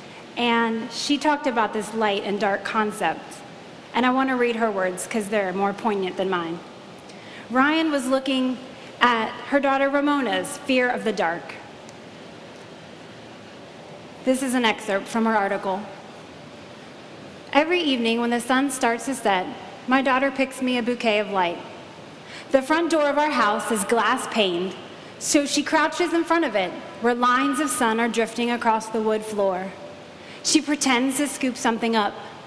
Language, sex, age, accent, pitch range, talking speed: English, female, 30-49, American, 205-270 Hz, 165 wpm